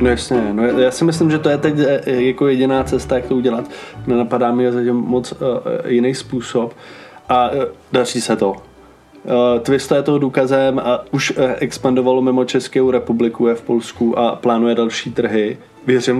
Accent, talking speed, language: native, 180 wpm, Czech